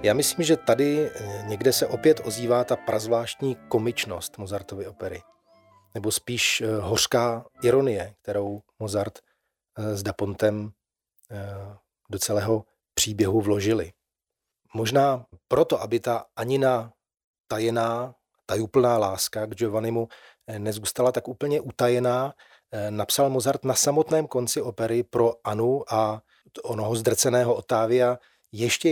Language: Czech